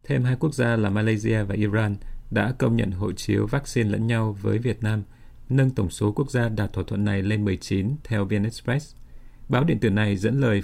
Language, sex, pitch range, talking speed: Vietnamese, male, 105-120 Hz, 215 wpm